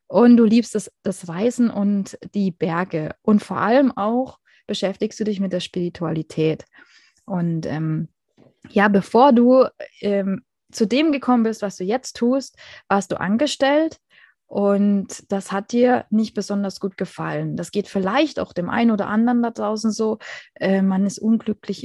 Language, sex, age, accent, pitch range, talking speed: German, female, 20-39, German, 185-235 Hz, 160 wpm